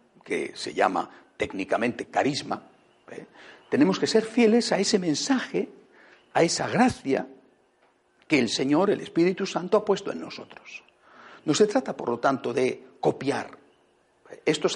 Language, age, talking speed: Spanish, 60-79, 140 wpm